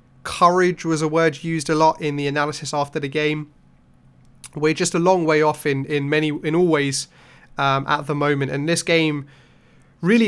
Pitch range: 140-165 Hz